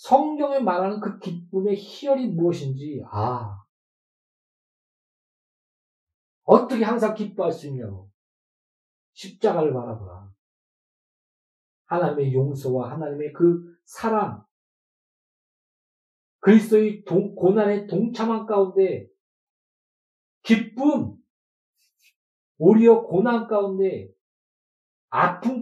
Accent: native